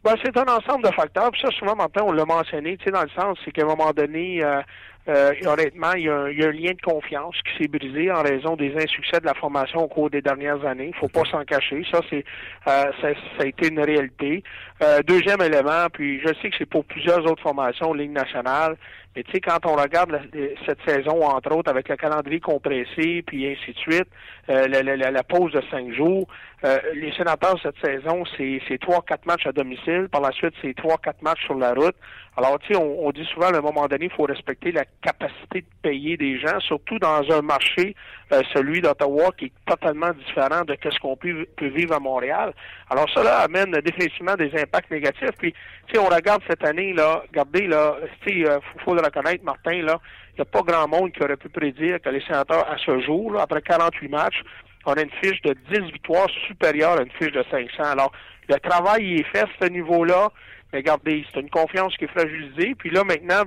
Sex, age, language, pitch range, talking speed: male, 60-79, French, 145-175 Hz, 225 wpm